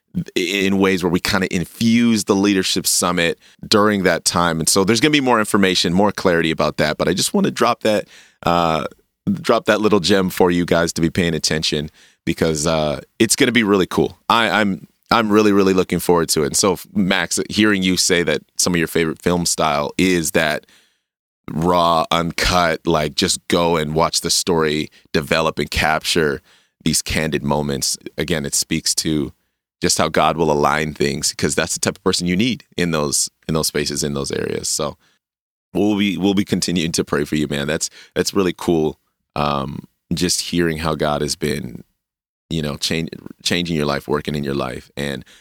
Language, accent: English, American